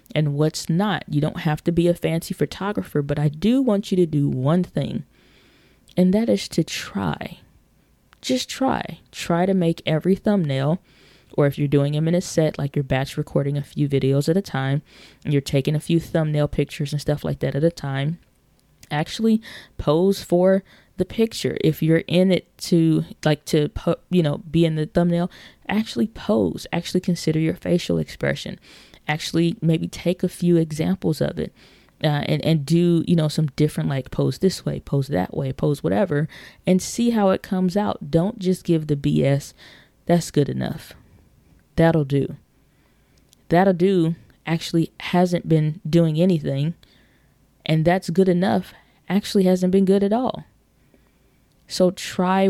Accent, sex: American, female